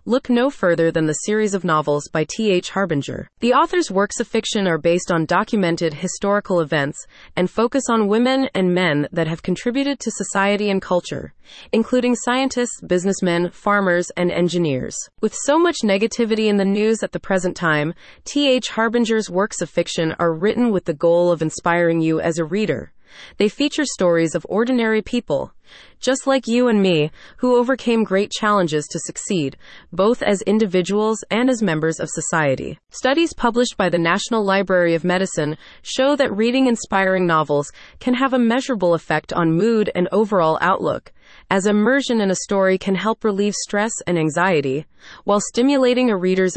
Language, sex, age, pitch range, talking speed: English, female, 30-49, 170-230 Hz, 170 wpm